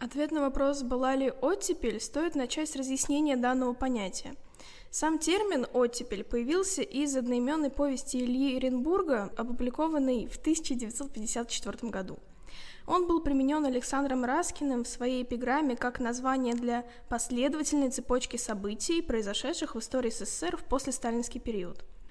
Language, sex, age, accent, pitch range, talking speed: Russian, female, 10-29, native, 240-285 Hz, 125 wpm